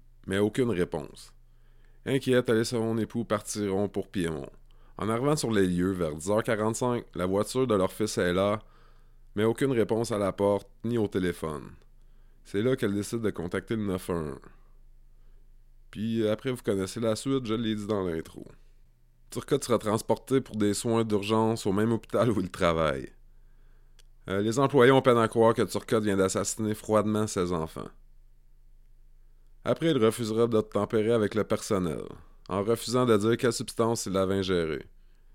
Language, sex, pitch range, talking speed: English, male, 85-115 Hz, 165 wpm